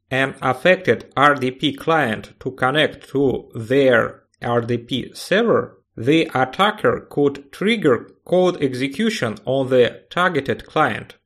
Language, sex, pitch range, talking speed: English, male, 125-175 Hz, 105 wpm